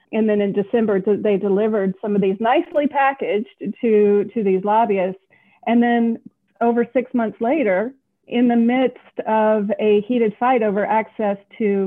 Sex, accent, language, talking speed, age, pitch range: female, American, English, 155 wpm, 40-59, 200-235 Hz